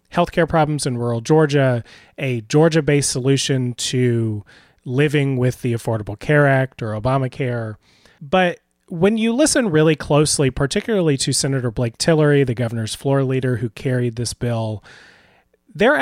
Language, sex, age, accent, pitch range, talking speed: English, male, 30-49, American, 120-150 Hz, 140 wpm